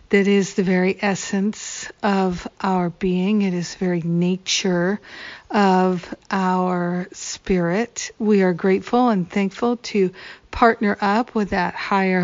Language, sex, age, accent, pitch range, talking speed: English, female, 50-69, American, 180-205 Hz, 130 wpm